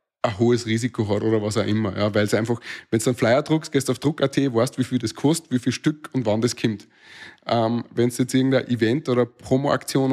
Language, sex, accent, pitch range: German, male, Austrian, 115-145 Hz